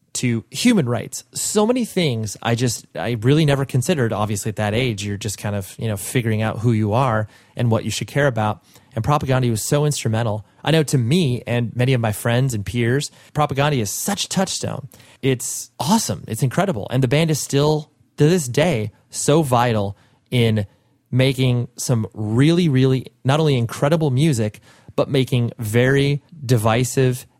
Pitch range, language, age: 110-140 Hz, English, 30-49